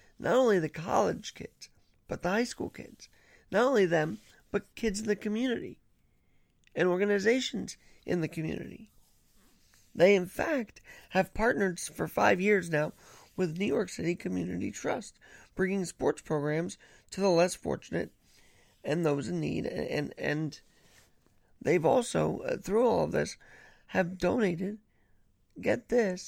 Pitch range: 135-210 Hz